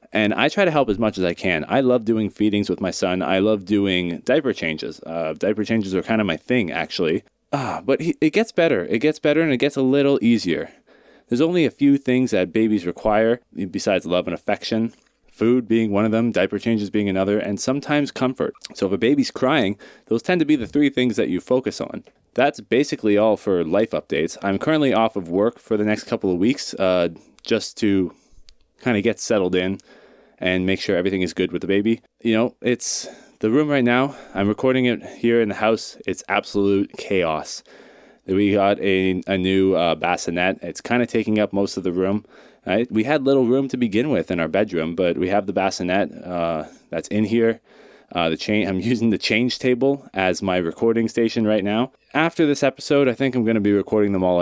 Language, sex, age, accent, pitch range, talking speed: English, male, 20-39, American, 95-125 Hz, 215 wpm